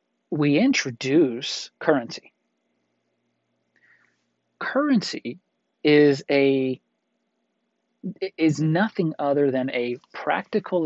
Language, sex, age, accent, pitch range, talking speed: English, male, 40-59, American, 130-170 Hz, 65 wpm